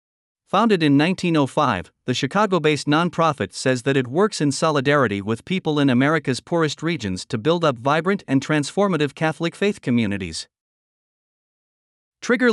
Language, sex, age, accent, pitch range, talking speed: English, male, 50-69, American, 130-165 Hz, 140 wpm